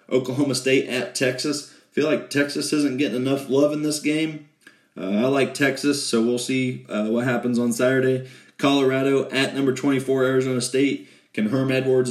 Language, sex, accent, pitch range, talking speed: English, male, American, 115-135 Hz, 175 wpm